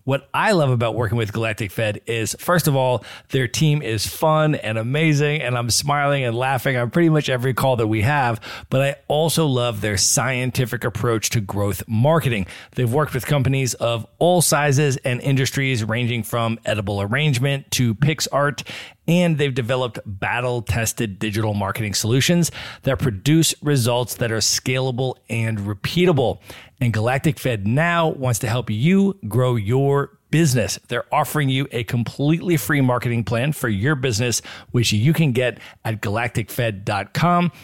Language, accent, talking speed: English, American, 160 wpm